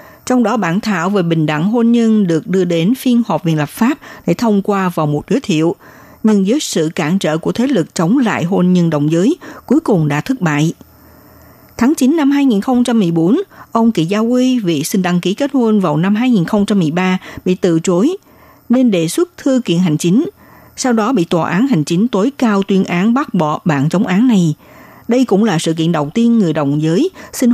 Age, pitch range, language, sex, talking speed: 60-79, 170-240 Hz, Vietnamese, female, 215 wpm